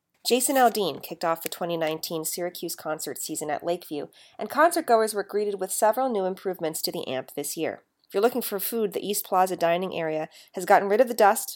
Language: English